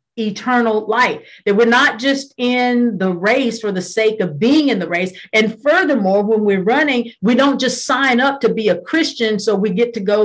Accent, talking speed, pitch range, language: American, 210 wpm, 200-270 Hz, English